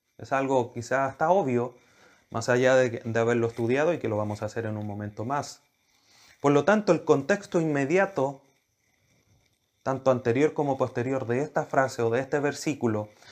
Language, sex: Spanish, male